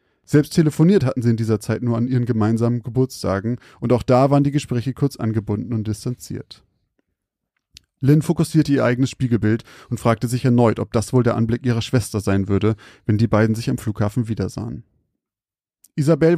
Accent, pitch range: German, 110-135 Hz